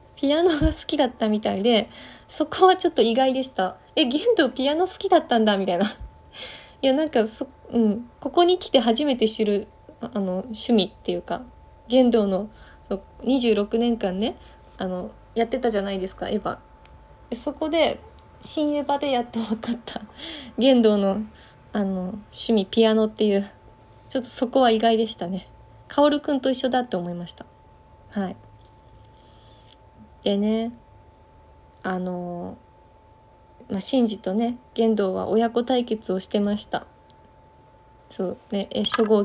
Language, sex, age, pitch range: Japanese, female, 20-39, 195-255 Hz